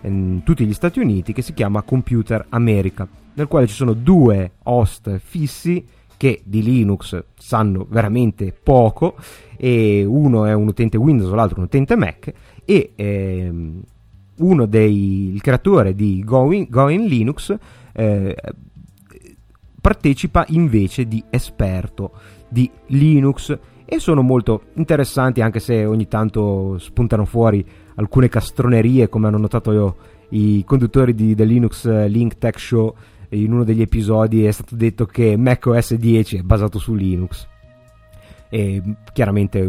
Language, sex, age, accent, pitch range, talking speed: Italian, male, 30-49, native, 100-125 Hz, 140 wpm